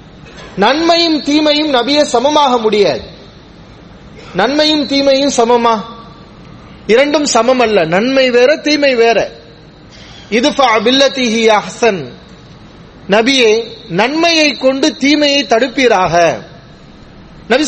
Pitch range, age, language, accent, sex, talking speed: 235-285 Hz, 30-49, English, Indian, male, 80 wpm